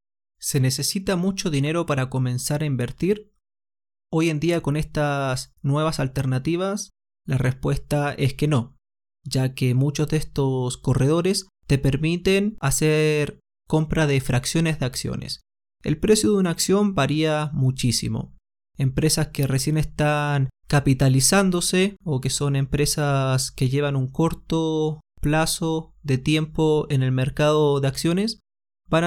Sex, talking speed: male, 130 wpm